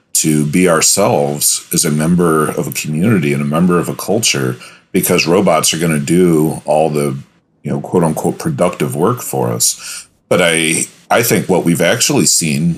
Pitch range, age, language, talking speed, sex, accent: 75-85 Hz, 40-59, English, 180 wpm, male, American